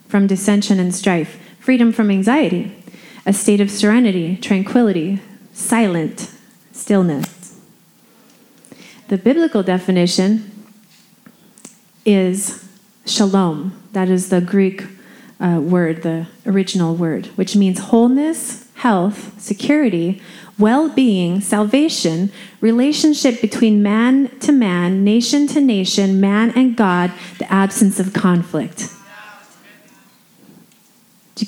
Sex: female